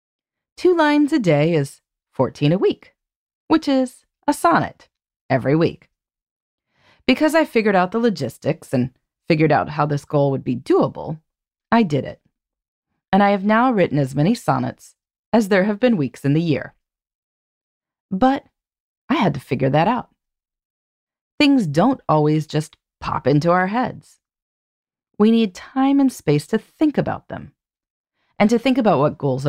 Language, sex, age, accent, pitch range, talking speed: English, female, 30-49, American, 155-255 Hz, 160 wpm